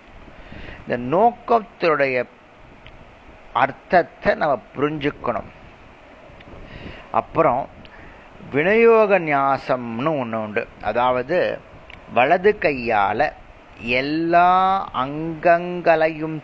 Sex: male